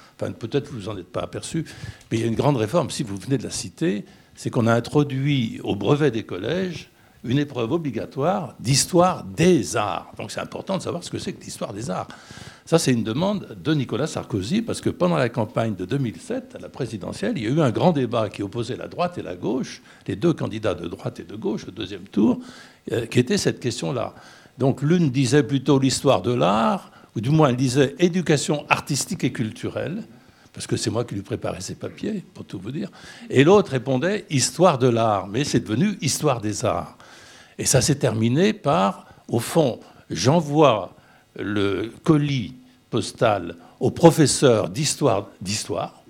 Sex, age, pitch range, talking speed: male, 60-79, 115-155 Hz, 200 wpm